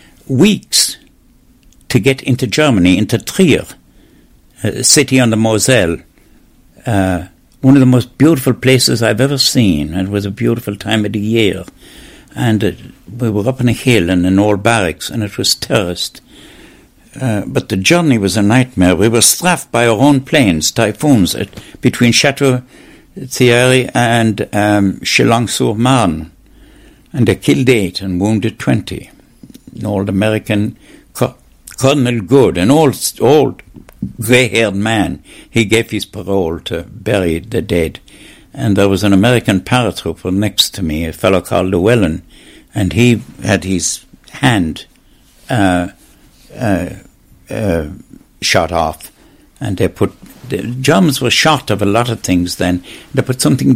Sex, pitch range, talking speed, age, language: male, 100-125 Hz, 145 wpm, 60-79, English